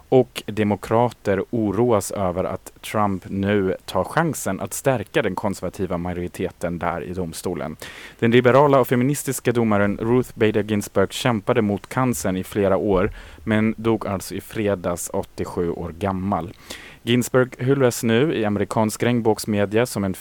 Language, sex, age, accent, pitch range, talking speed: Swedish, male, 30-49, Norwegian, 95-120 Hz, 140 wpm